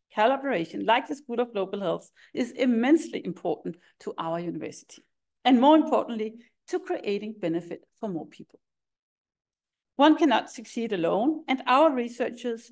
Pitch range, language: 215-275 Hz, Danish